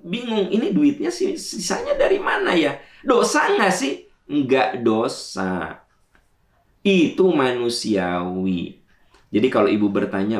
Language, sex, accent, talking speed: Indonesian, male, native, 110 wpm